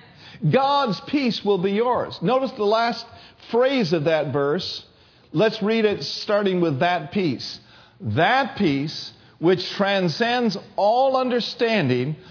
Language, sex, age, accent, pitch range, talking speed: English, male, 50-69, American, 160-230 Hz, 120 wpm